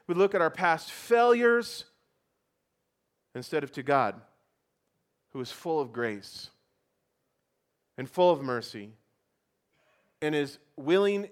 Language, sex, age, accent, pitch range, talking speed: English, male, 40-59, American, 140-200 Hz, 115 wpm